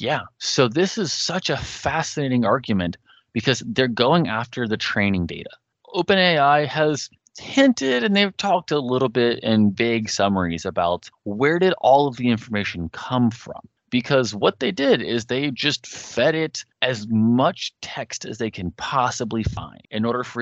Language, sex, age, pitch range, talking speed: English, male, 30-49, 110-145 Hz, 165 wpm